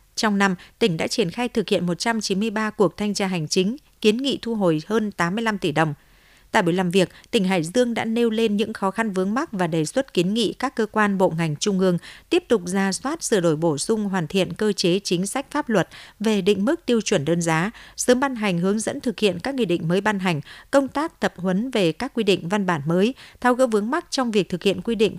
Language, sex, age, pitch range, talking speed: Vietnamese, female, 50-69, 185-230 Hz, 250 wpm